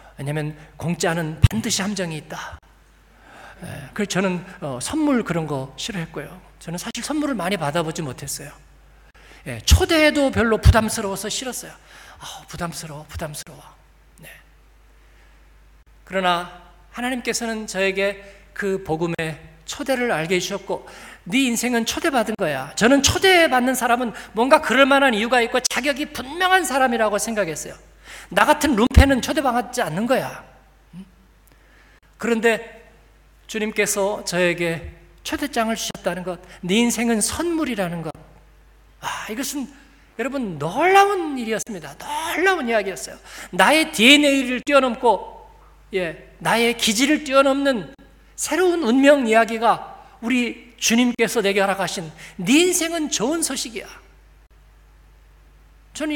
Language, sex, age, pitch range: Korean, male, 40-59, 170-270 Hz